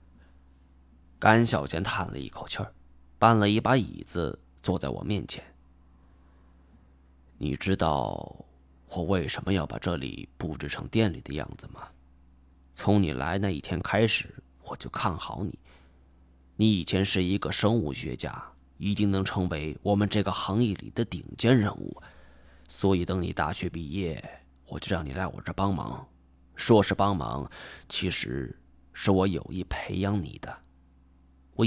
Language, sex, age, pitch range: Chinese, male, 20-39, 65-100 Hz